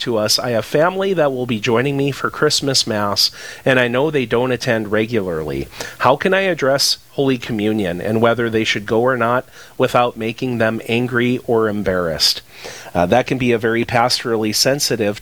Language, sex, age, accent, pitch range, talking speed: English, male, 40-59, American, 105-130 Hz, 185 wpm